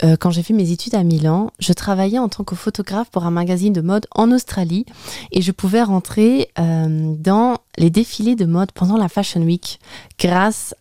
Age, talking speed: 20-39, 190 wpm